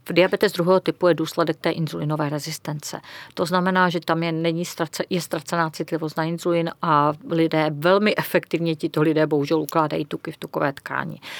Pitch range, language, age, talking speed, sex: 155-175 Hz, Czech, 40-59, 175 wpm, female